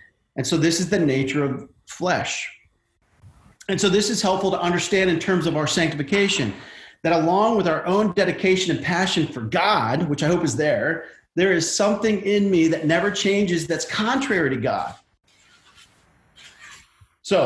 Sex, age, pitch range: male, 40-59, 150-190 Hz